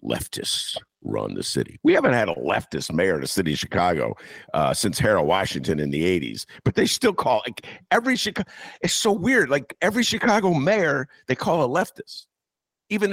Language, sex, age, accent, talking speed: English, male, 50-69, American, 190 wpm